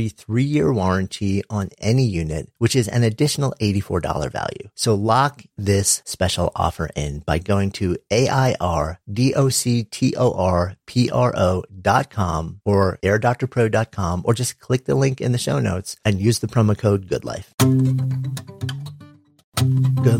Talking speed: 125 wpm